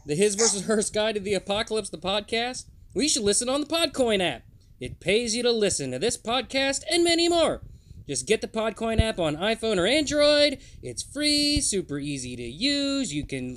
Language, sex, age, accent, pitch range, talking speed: English, male, 20-39, American, 160-260 Hz, 200 wpm